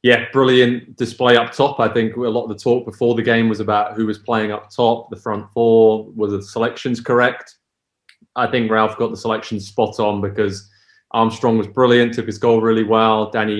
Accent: British